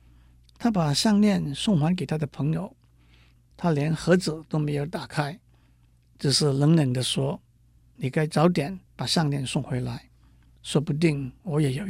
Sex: male